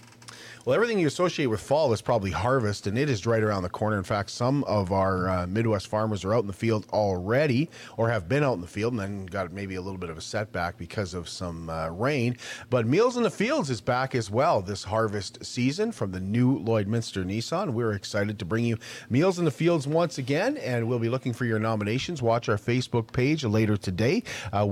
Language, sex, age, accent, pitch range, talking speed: English, male, 40-59, American, 105-125 Hz, 230 wpm